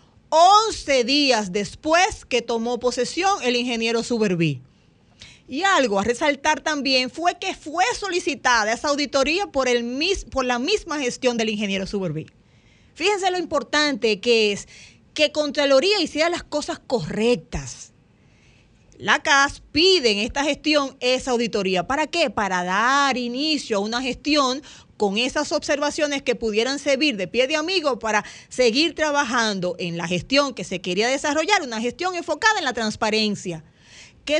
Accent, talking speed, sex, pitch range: American, 145 wpm, female, 230-315 Hz